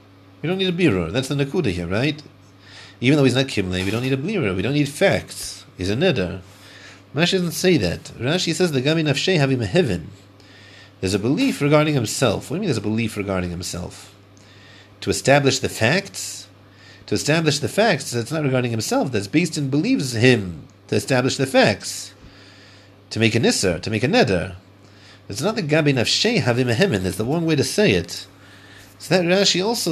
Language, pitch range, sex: English, 100-140 Hz, male